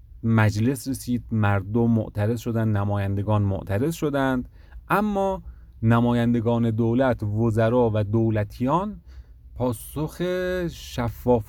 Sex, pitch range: male, 100-130 Hz